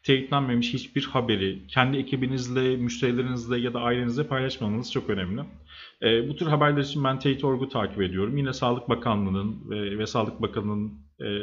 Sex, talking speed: male, 150 wpm